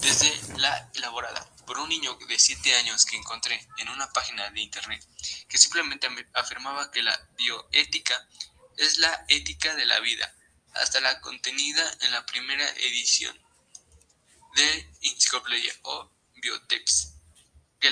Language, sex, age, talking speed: Spanish, male, 20-39, 135 wpm